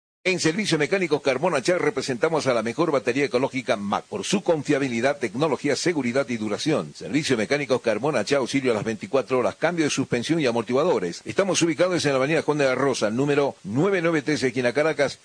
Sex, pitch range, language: male, 125-160 Hz, Spanish